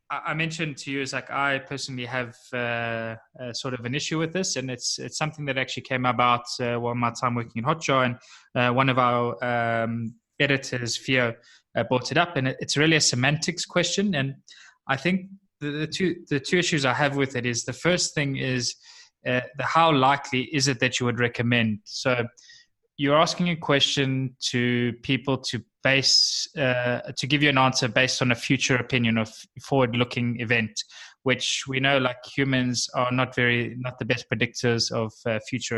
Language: English